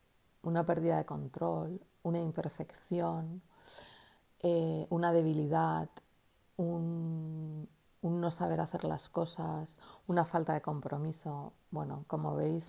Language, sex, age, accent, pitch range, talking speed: Spanish, female, 40-59, Spanish, 155-175 Hz, 110 wpm